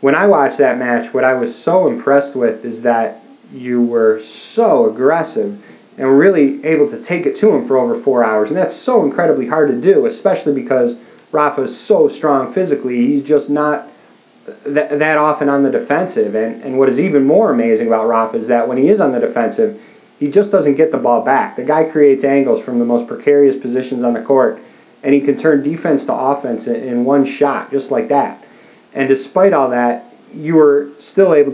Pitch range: 130-160 Hz